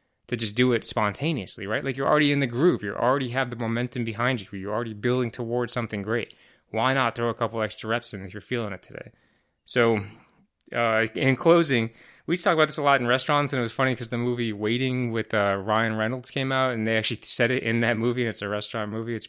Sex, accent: male, American